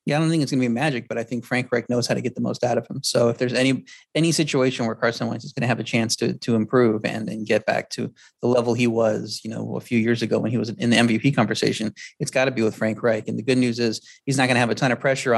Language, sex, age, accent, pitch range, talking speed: English, male, 30-49, American, 115-125 Hz, 315 wpm